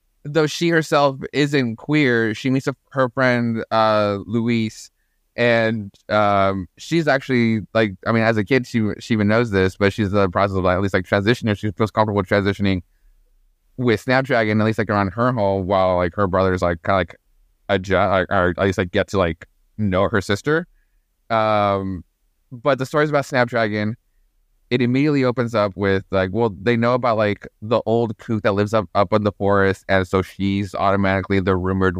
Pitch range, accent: 95-120 Hz, American